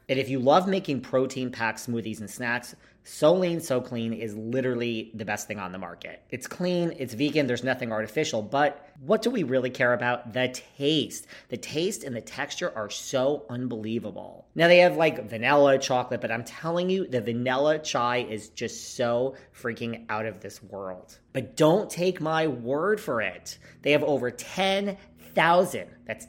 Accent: American